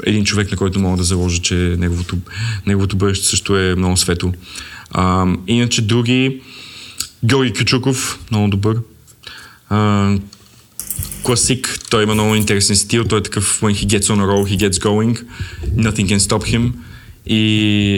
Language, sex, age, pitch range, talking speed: Bulgarian, male, 20-39, 95-110 Hz, 155 wpm